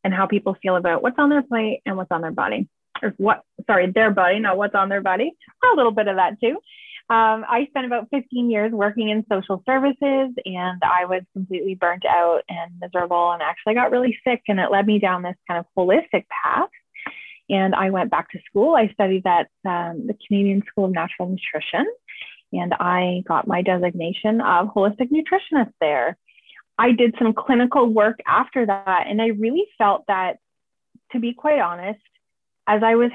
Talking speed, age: 195 wpm, 20-39